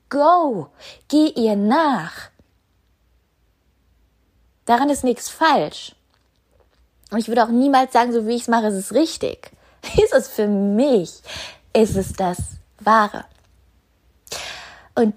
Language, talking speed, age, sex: German, 125 wpm, 20-39, female